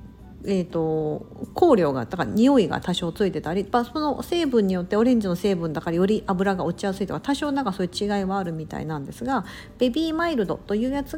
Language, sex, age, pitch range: Japanese, female, 50-69, 170-255 Hz